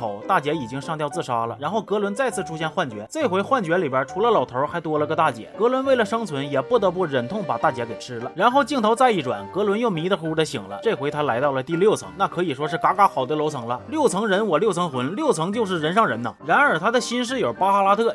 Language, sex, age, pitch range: Chinese, male, 30-49, 155-230 Hz